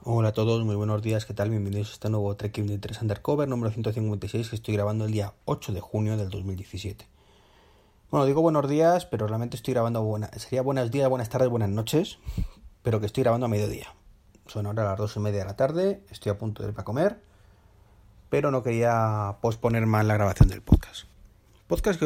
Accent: Spanish